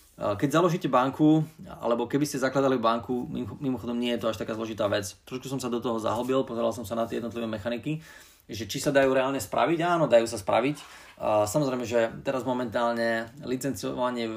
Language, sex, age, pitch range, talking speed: Slovak, male, 20-39, 110-125 Hz, 190 wpm